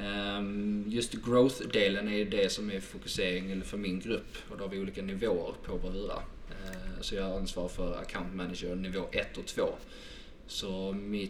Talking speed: 160 wpm